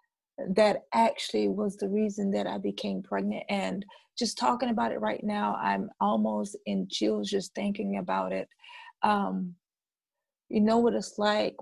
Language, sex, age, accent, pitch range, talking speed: English, female, 30-49, American, 190-235 Hz, 155 wpm